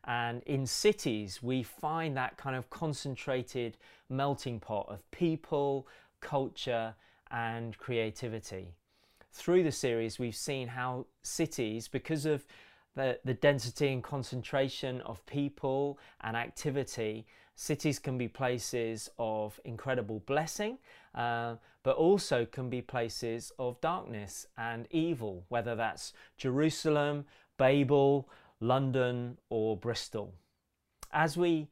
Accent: British